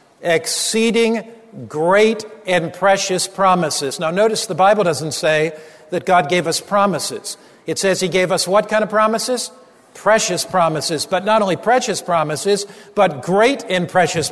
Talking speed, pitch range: 150 wpm, 175-215 Hz